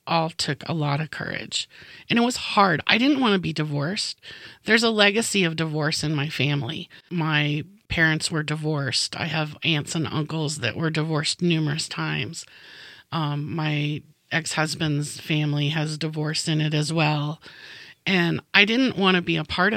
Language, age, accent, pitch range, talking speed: English, 30-49, American, 155-200 Hz, 170 wpm